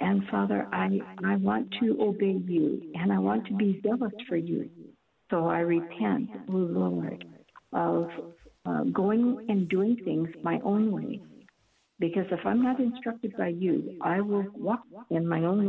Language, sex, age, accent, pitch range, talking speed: English, female, 60-79, American, 165-210 Hz, 165 wpm